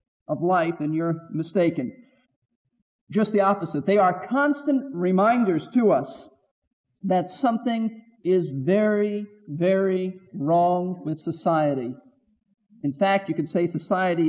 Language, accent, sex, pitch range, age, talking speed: English, American, male, 170-215 Hz, 50-69, 120 wpm